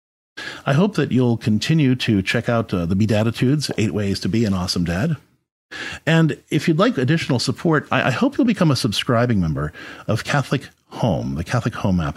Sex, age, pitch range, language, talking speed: male, 50-69, 95-140 Hz, English, 195 wpm